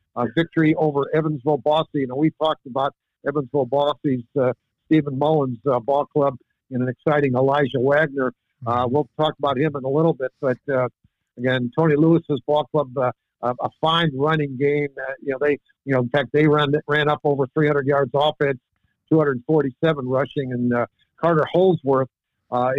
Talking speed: 175 wpm